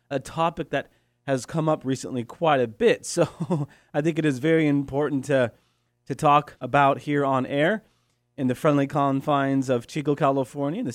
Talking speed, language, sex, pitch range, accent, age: 180 wpm, English, male, 120-155 Hz, American, 30-49